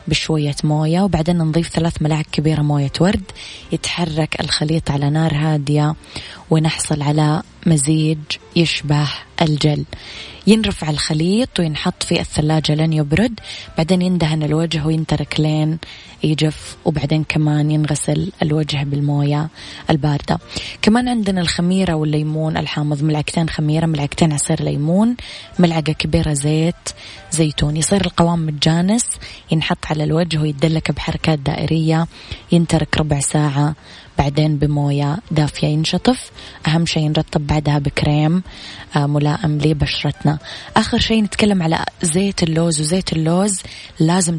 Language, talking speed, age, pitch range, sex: Arabic, 115 wpm, 20-39, 150-170 Hz, female